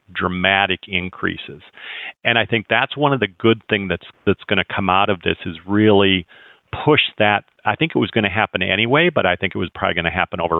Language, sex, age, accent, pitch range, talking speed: English, male, 50-69, American, 90-105 Hz, 230 wpm